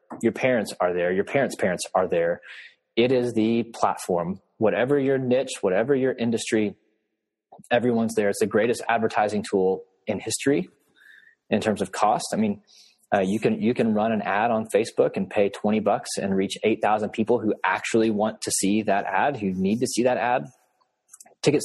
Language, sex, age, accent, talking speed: English, male, 20-39, American, 185 wpm